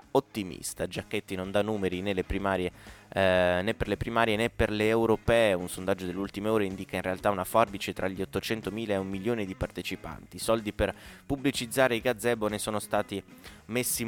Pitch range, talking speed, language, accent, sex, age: 95-115 Hz, 185 wpm, Italian, native, male, 20-39